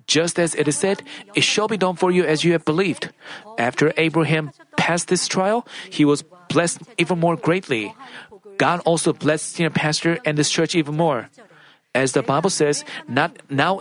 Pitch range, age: 155-185 Hz, 40-59